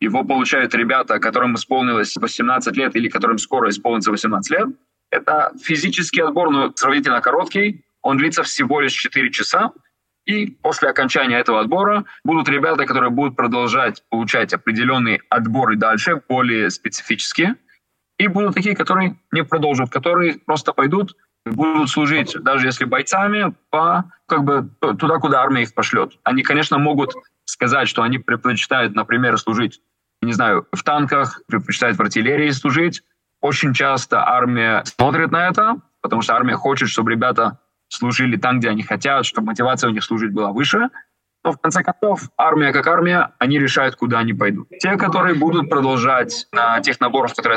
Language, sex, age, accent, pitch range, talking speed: Russian, male, 20-39, native, 130-190 Hz, 155 wpm